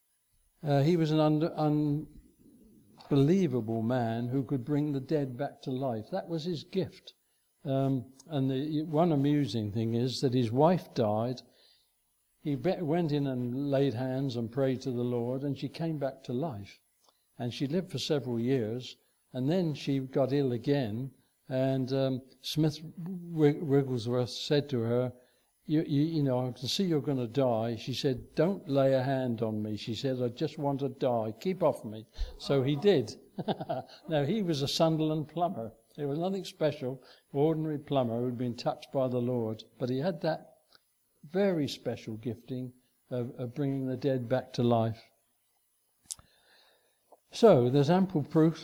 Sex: male